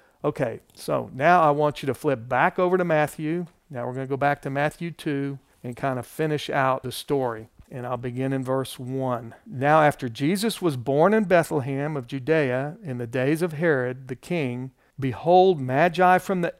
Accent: American